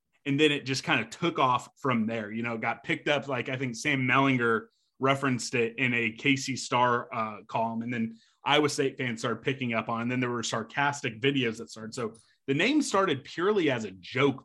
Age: 30-49